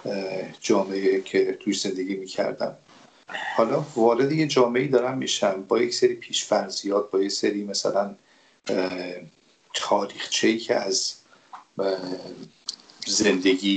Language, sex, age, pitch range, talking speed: Persian, male, 50-69, 95-115 Hz, 110 wpm